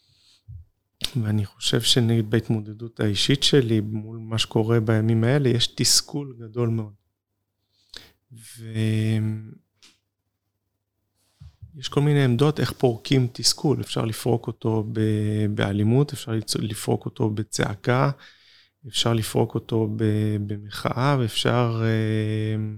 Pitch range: 105-120 Hz